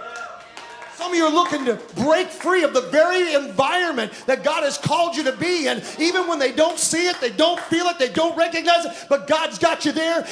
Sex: male